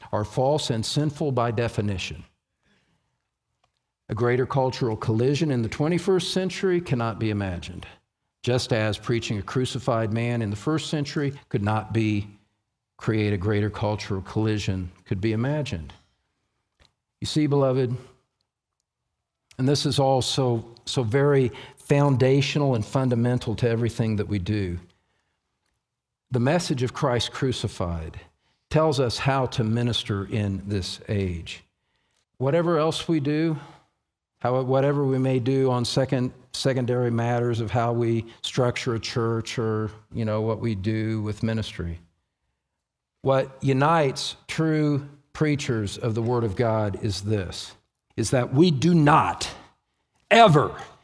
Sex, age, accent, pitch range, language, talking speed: male, 50-69, American, 105-145 Hz, English, 135 wpm